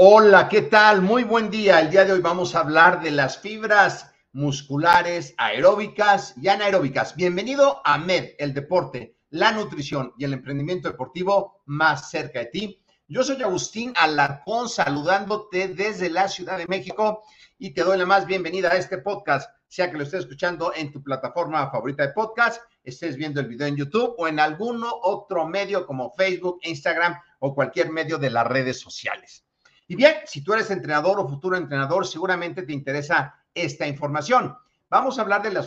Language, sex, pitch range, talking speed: Spanish, male, 145-200 Hz, 175 wpm